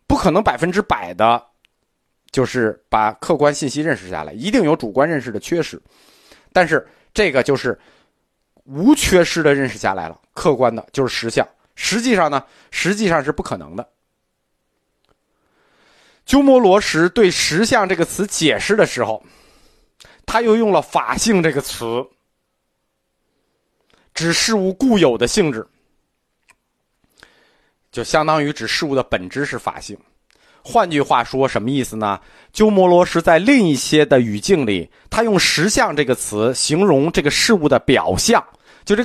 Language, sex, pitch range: Chinese, male, 125-205 Hz